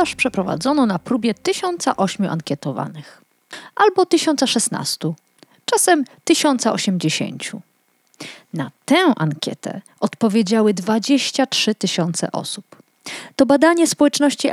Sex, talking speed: female, 80 wpm